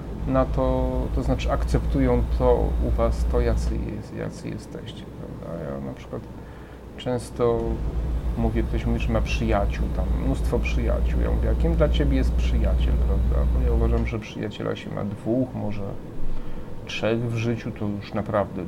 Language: Polish